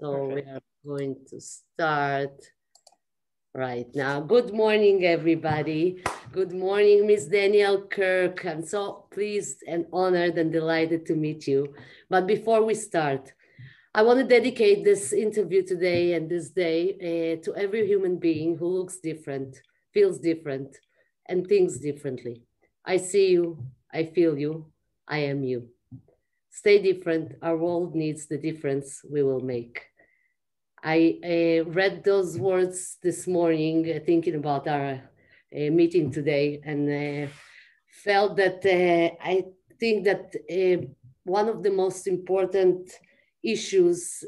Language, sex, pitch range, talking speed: Hebrew, female, 145-185 Hz, 135 wpm